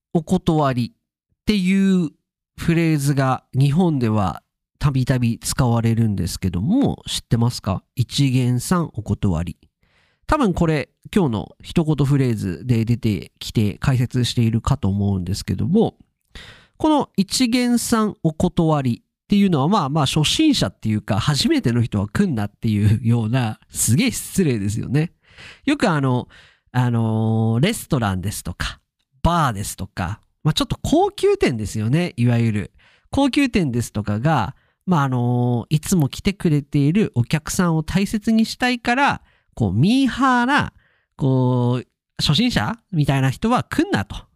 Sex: male